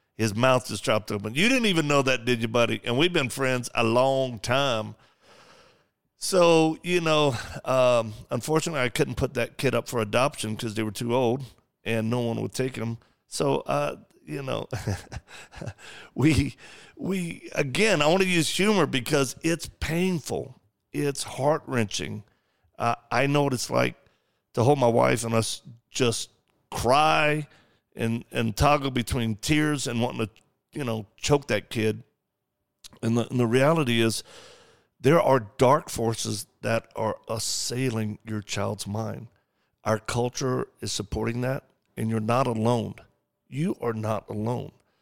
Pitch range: 110-135 Hz